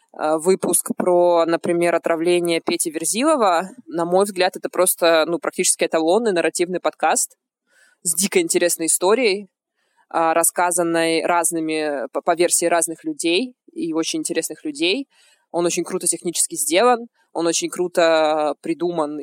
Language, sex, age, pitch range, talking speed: Russian, female, 20-39, 160-185 Hz, 120 wpm